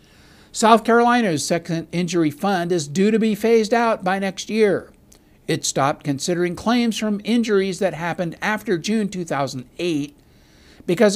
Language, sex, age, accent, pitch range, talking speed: English, male, 60-79, American, 145-205 Hz, 140 wpm